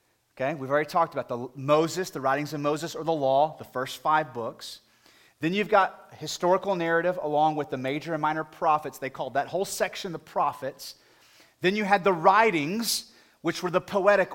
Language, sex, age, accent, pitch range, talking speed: English, male, 30-49, American, 170-255 Hz, 190 wpm